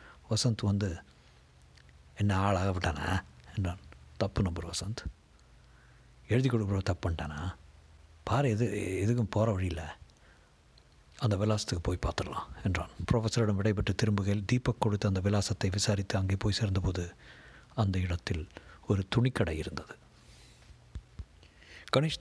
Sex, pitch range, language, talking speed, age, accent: male, 90-115 Hz, Tamil, 105 wpm, 60-79, native